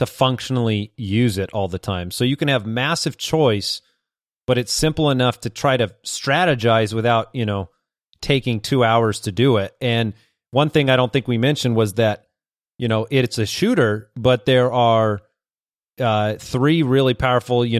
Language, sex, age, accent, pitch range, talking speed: English, male, 30-49, American, 110-130 Hz, 180 wpm